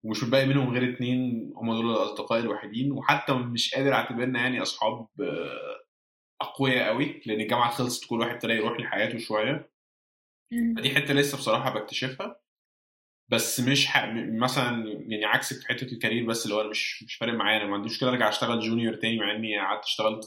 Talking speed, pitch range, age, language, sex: 175 wpm, 110-135 Hz, 20-39, Arabic, male